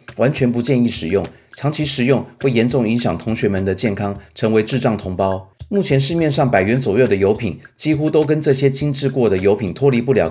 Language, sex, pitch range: Chinese, male, 105-135 Hz